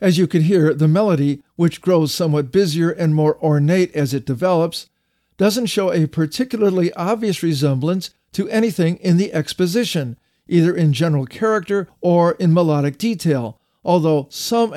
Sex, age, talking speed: male, 50-69, 150 wpm